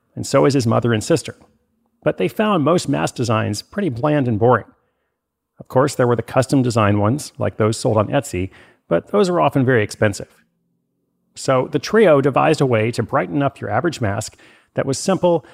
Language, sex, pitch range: English, male, 115-150 Hz